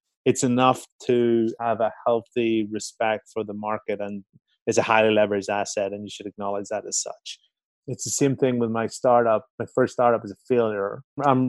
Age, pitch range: 30-49, 105-130 Hz